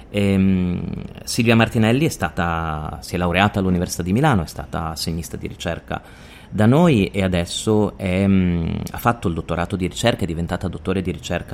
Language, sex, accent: Italian, male, native